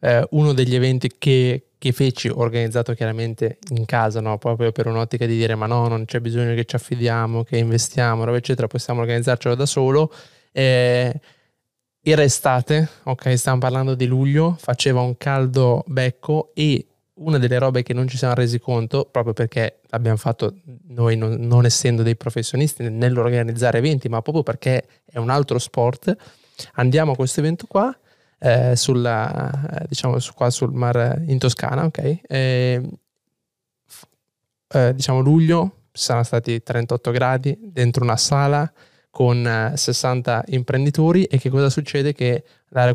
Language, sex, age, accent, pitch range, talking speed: Italian, male, 20-39, native, 120-140 Hz, 155 wpm